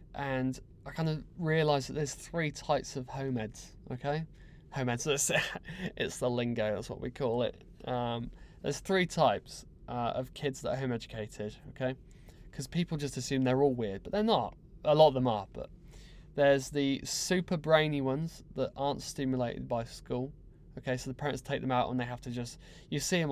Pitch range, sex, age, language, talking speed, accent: 125-145 Hz, male, 20-39, English, 190 wpm, British